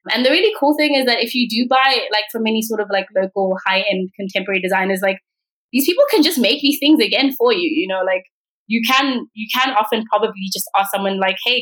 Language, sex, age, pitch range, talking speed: English, female, 20-39, 195-250 Hz, 240 wpm